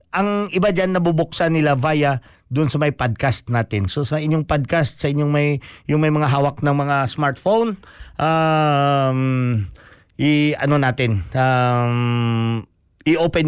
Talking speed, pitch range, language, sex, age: 140 wpm, 125-155 Hz, Filipino, male, 50-69